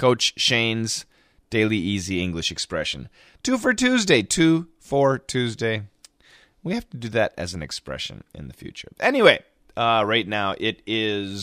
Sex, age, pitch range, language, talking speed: male, 30-49, 110-155 Hz, English, 150 wpm